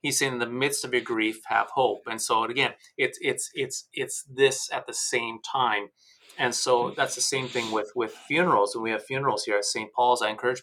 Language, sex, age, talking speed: English, male, 30-49, 230 wpm